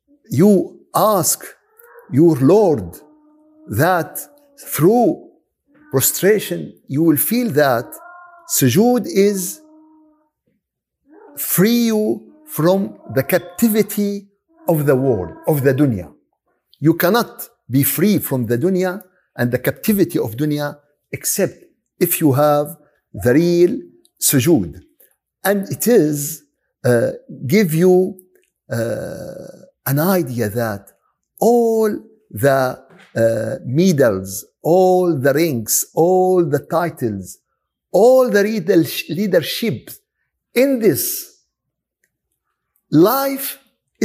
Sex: male